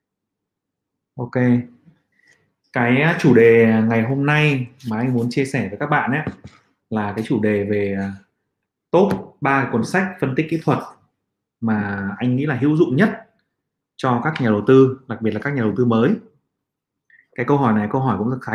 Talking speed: 185 wpm